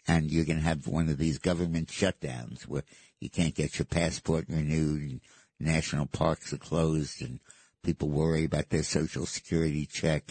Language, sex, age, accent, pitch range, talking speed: English, male, 60-79, American, 75-90 Hz, 175 wpm